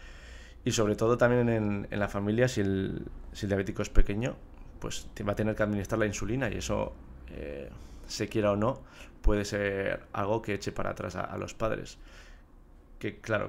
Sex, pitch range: male, 95-110 Hz